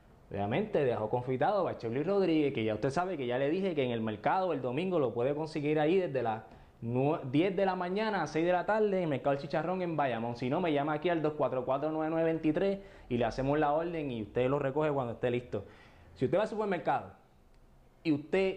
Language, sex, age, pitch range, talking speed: Spanish, male, 20-39, 125-170 Hz, 220 wpm